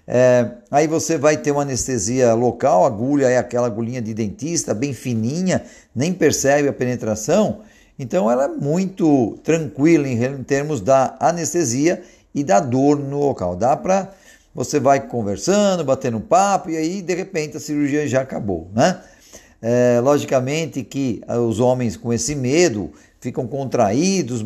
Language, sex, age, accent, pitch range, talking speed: Portuguese, male, 50-69, Brazilian, 120-165 Hz, 150 wpm